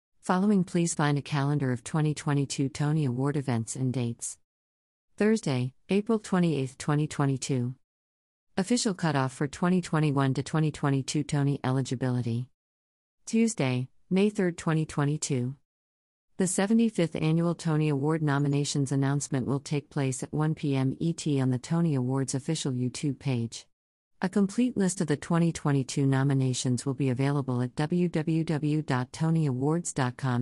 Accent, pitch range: American, 130-160 Hz